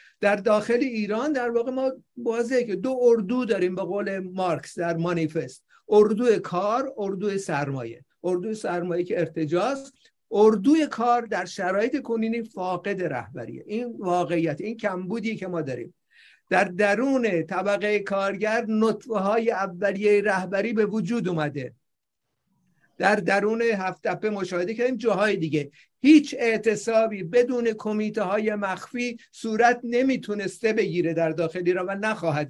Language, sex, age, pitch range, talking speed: Persian, male, 50-69, 185-230 Hz, 125 wpm